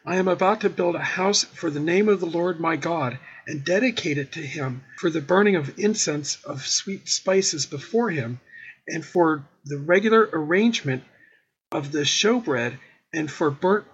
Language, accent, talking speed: English, American, 175 wpm